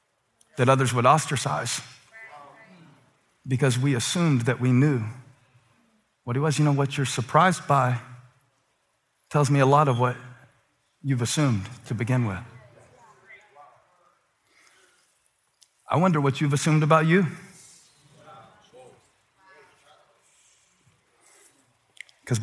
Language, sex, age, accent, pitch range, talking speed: English, male, 40-59, American, 110-140 Hz, 100 wpm